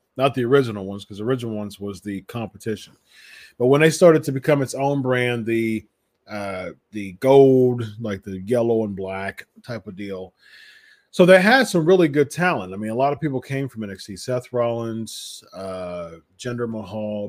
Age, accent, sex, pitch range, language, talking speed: 30-49, American, male, 105-135 Hz, English, 185 wpm